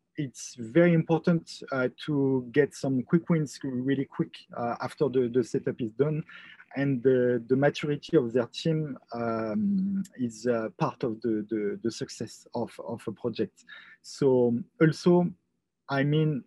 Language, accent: English, French